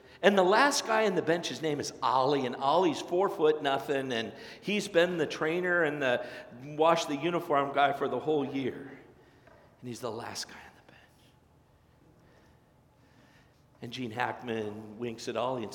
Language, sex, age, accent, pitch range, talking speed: English, male, 50-69, American, 120-155 Hz, 175 wpm